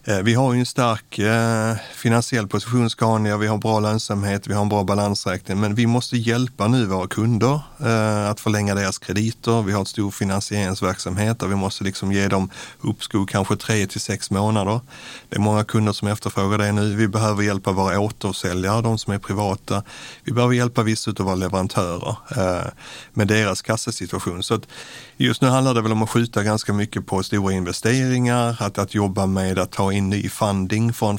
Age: 30-49